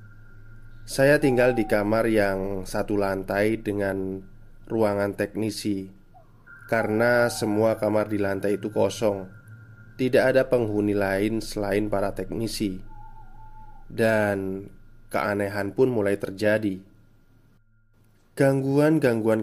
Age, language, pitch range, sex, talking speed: 20-39, Indonesian, 100-120 Hz, male, 95 wpm